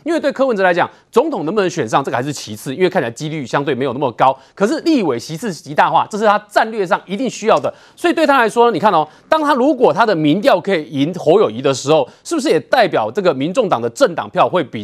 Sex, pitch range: male, 180-270 Hz